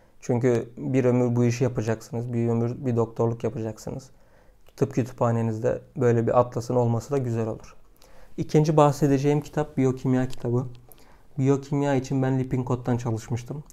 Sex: male